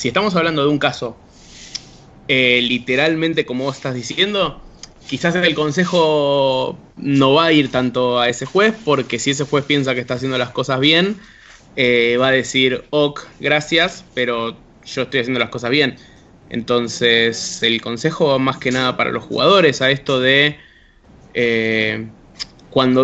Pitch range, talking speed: 125-145 Hz, 160 wpm